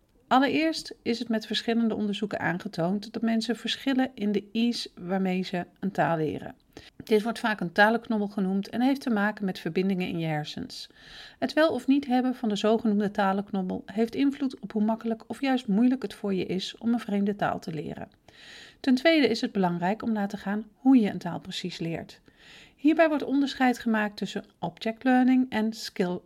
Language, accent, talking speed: Dutch, Dutch, 190 wpm